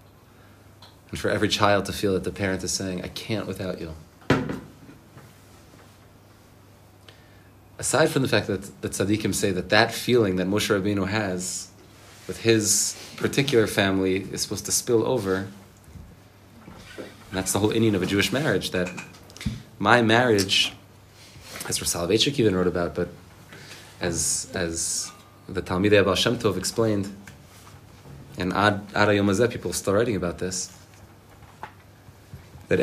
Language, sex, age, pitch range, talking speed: English, male, 30-49, 95-110 Hz, 140 wpm